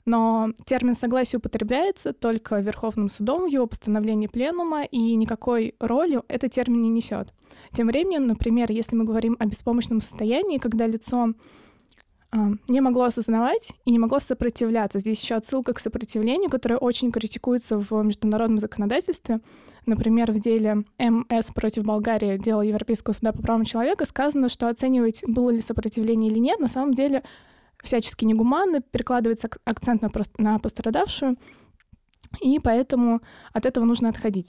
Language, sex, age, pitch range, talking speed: Russian, female, 20-39, 220-250 Hz, 145 wpm